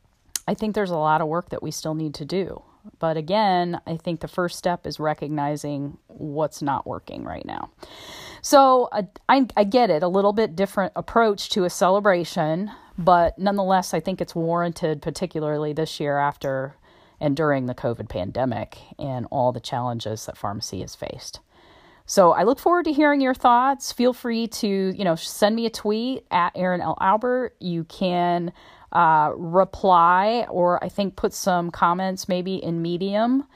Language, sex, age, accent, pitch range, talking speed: English, female, 40-59, American, 160-200 Hz, 175 wpm